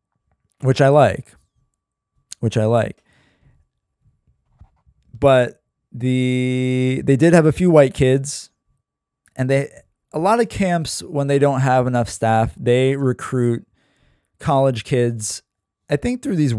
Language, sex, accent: English, male, American